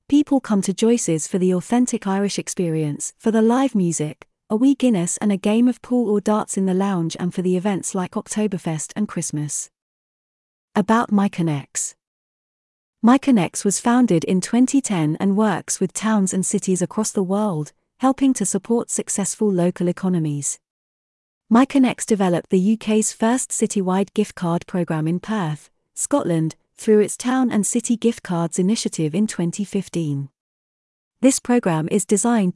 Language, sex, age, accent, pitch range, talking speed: English, female, 40-59, British, 175-230 Hz, 150 wpm